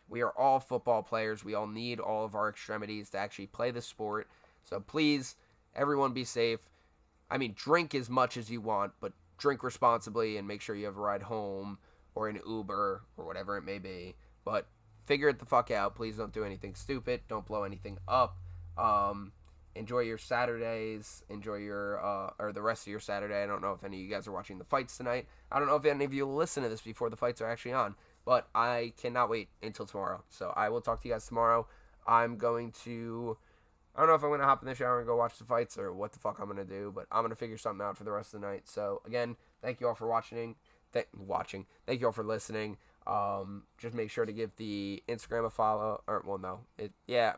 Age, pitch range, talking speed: 20-39, 100-120 Hz, 235 wpm